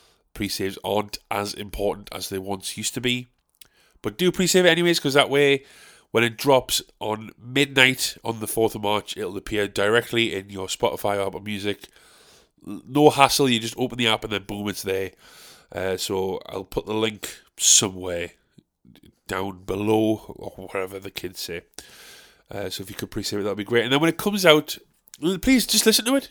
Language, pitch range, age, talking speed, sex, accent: English, 105-165 Hz, 30-49, 190 wpm, male, British